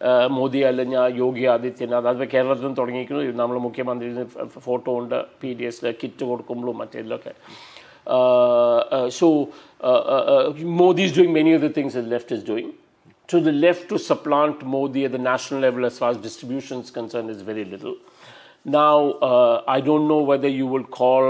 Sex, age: male, 50-69